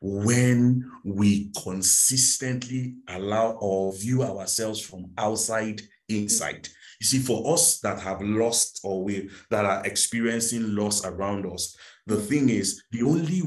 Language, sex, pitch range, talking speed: English, male, 100-130 Hz, 130 wpm